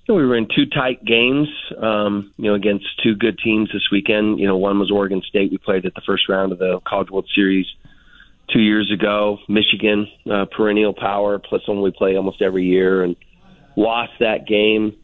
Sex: male